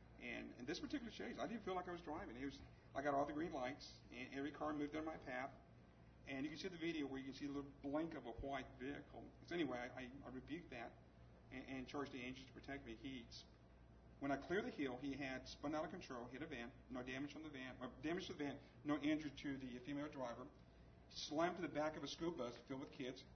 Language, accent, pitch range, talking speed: English, American, 120-145 Hz, 255 wpm